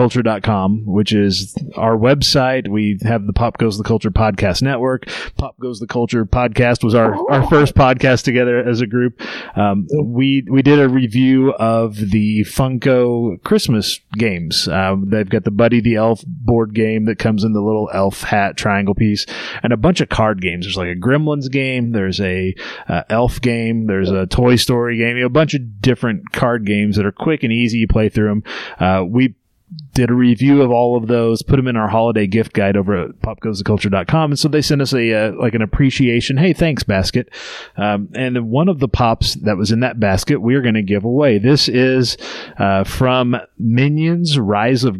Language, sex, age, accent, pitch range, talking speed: English, male, 30-49, American, 105-130 Hz, 205 wpm